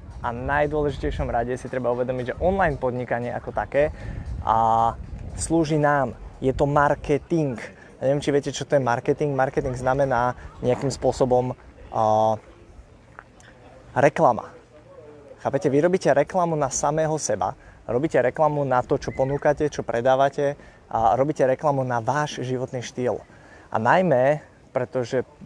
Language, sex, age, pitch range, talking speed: Slovak, male, 20-39, 120-145 Hz, 130 wpm